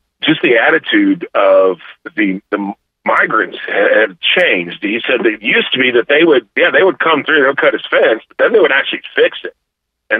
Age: 40-59